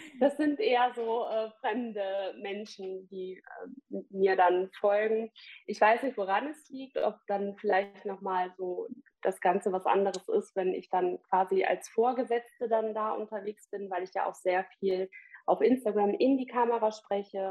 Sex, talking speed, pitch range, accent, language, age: female, 170 wpm, 190-225 Hz, German, German, 20-39